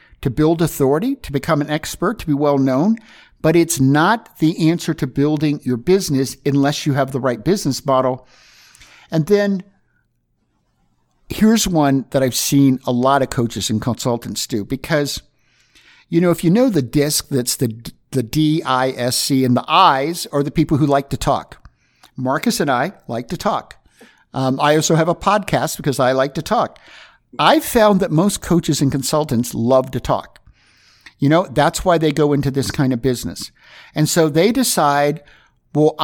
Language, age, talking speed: English, 50-69, 175 wpm